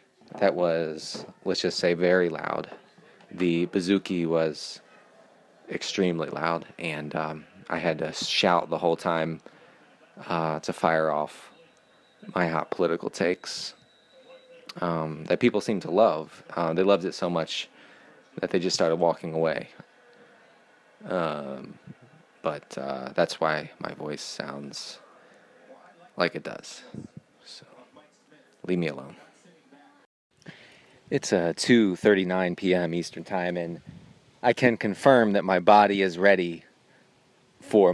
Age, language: 30-49, English